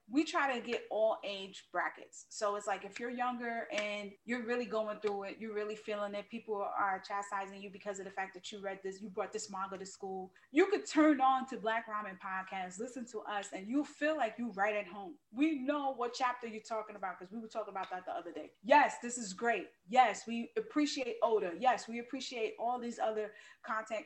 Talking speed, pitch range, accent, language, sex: 225 wpm, 205-280 Hz, American, English, female